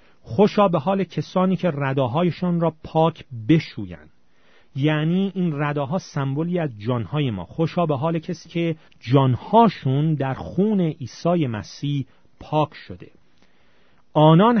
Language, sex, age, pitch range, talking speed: Persian, male, 40-59, 120-160 Hz, 120 wpm